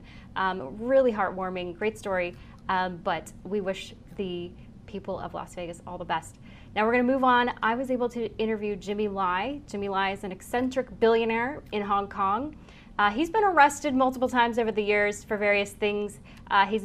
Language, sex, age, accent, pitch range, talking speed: English, female, 20-39, American, 190-220 Hz, 190 wpm